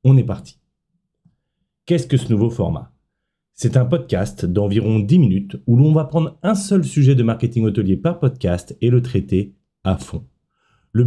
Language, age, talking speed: French, 30-49, 175 wpm